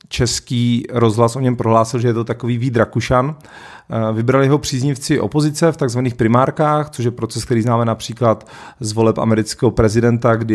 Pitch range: 110-130 Hz